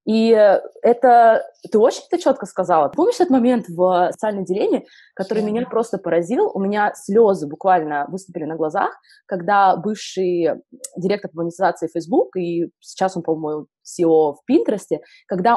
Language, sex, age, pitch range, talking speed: Russian, female, 20-39, 180-240 Hz, 145 wpm